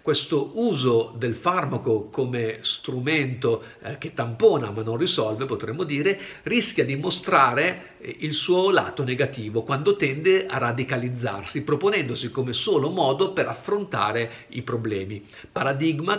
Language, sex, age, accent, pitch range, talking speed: Italian, male, 50-69, native, 115-150 Hz, 120 wpm